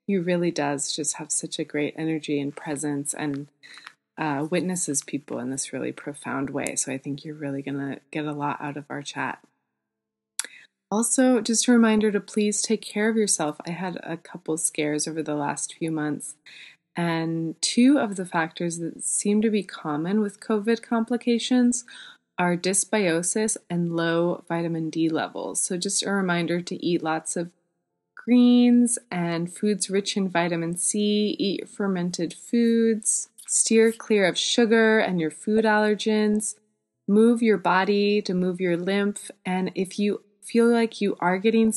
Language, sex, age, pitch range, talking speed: English, female, 20-39, 160-210 Hz, 165 wpm